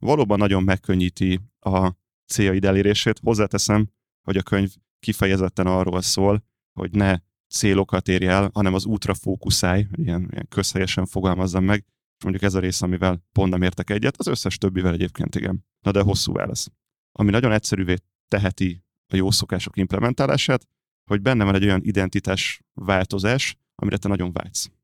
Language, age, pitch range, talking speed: Hungarian, 30-49, 95-105 Hz, 155 wpm